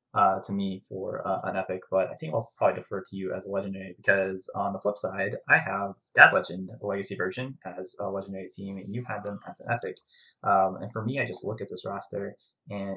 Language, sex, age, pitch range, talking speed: English, male, 20-39, 95-130 Hz, 240 wpm